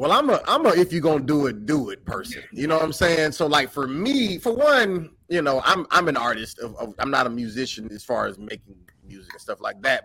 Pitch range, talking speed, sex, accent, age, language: 115-160 Hz, 275 wpm, male, American, 30-49, English